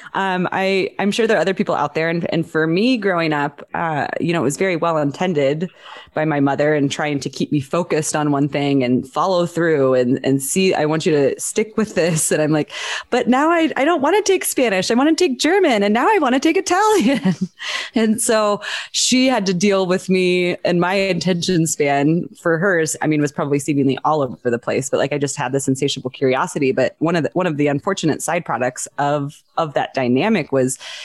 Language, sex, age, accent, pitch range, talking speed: English, female, 20-39, American, 140-190 Hz, 230 wpm